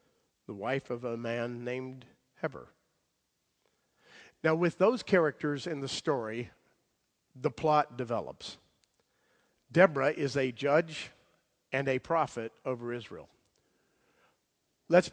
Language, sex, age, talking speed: English, male, 50-69, 105 wpm